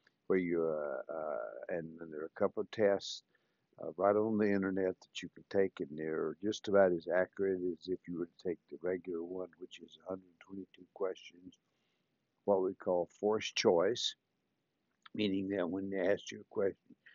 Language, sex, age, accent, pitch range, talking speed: English, male, 60-79, American, 90-100 Hz, 185 wpm